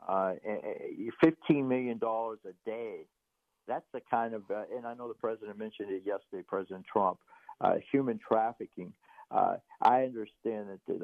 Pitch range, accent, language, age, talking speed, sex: 115-170 Hz, American, English, 60-79, 160 wpm, male